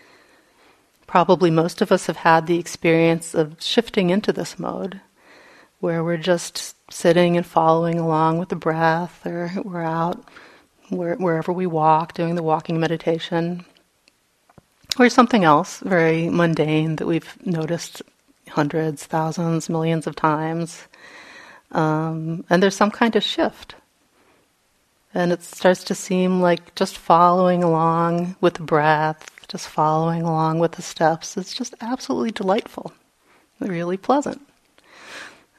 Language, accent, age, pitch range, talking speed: English, American, 40-59, 160-195 Hz, 130 wpm